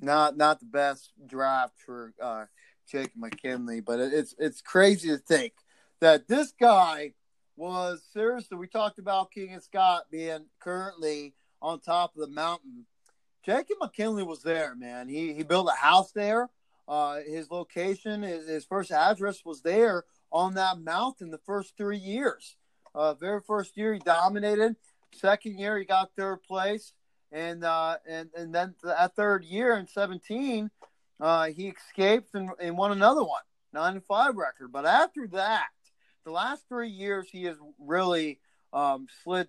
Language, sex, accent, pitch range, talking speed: English, male, American, 150-195 Hz, 165 wpm